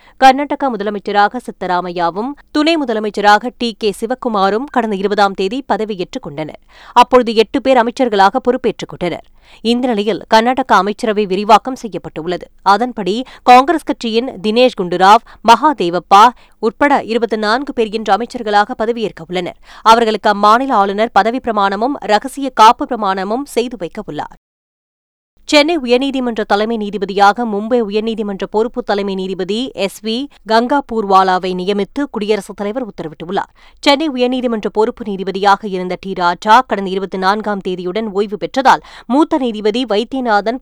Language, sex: Tamil, female